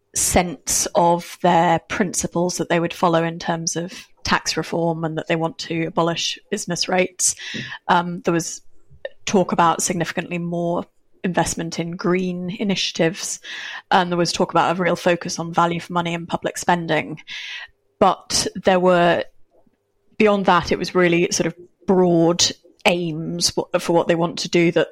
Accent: British